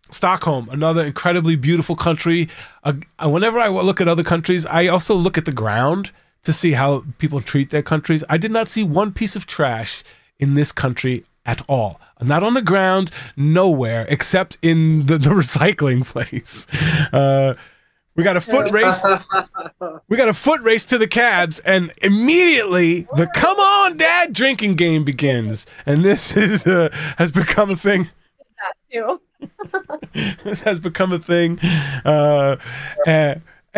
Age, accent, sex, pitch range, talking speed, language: 30-49, American, male, 145-195 Hz, 155 wpm, English